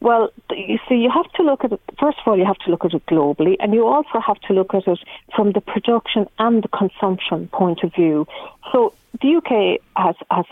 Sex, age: female, 50-69